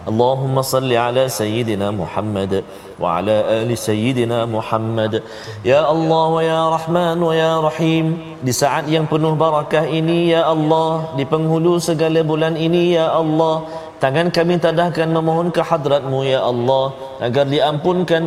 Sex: male